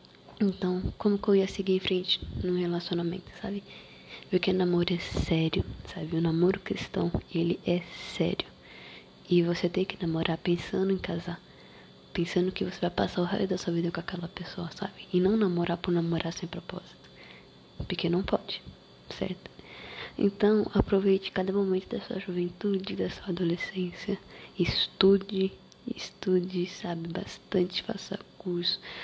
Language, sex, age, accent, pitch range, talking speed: Portuguese, female, 20-39, Brazilian, 175-190 Hz, 150 wpm